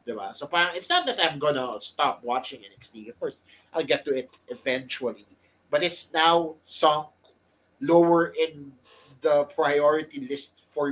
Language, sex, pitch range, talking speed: English, male, 140-175 Hz, 135 wpm